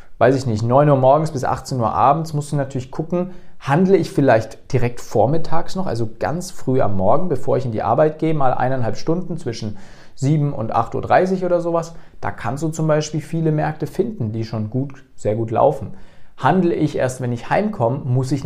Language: German